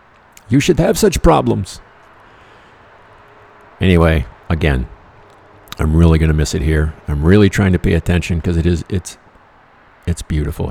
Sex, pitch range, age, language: male, 80-95 Hz, 50-69, English